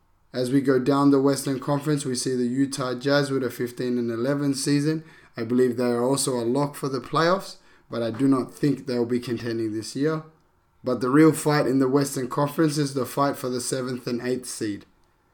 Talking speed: 220 wpm